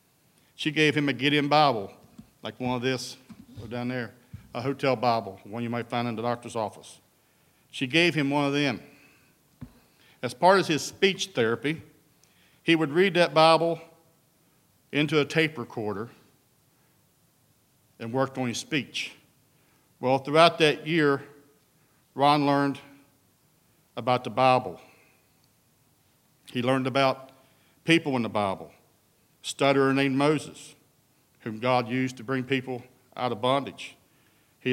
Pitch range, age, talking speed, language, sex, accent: 125-145 Hz, 60-79, 135 wpm, English, male, American